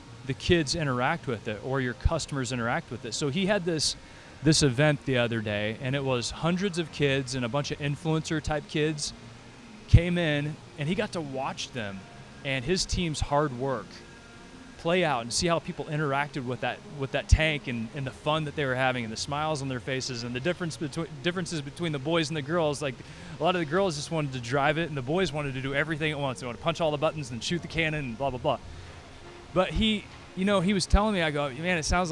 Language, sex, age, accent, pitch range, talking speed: English, male, 20-39, American, 125-160 Hz, 245 wpm